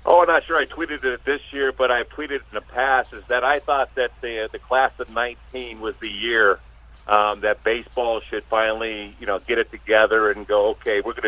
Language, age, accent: English, 50-69, American